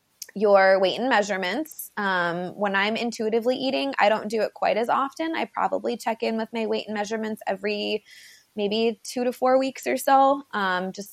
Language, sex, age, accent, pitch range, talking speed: English, female, 20-39, American, 190-245 Hz, 190 wpm